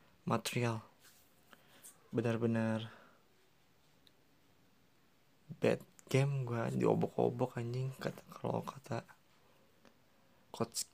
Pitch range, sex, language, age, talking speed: 115-145 Hz, male, Indonesian, 20-39, 60 wpm